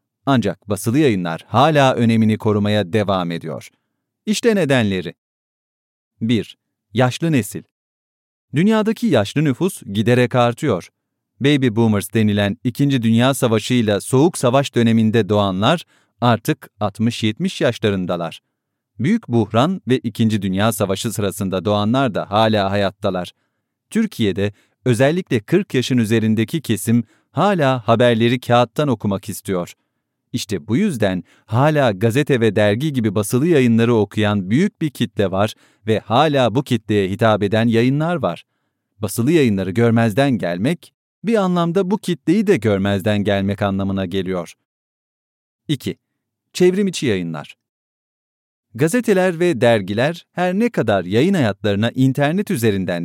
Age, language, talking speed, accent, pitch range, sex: 40-59, English, 120 wpm, Turkish, 105-140 Hz, male